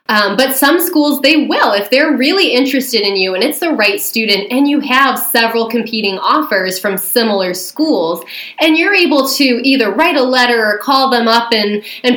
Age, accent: 20-39, American